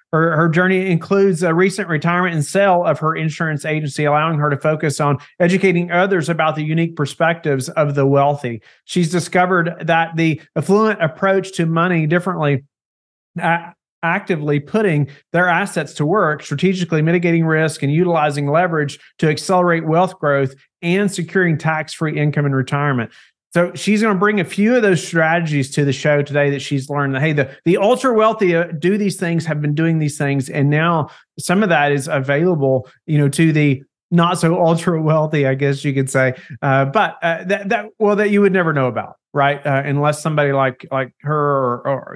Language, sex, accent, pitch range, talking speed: English, male, American, 140-175 Hz, 185 wpm